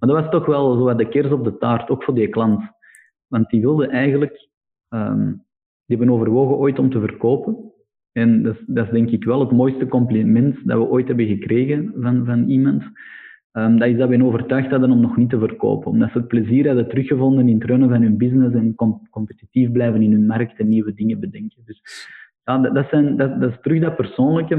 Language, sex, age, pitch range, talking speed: Dutch, male, 20-39, 110-130 Hz, 220 wpm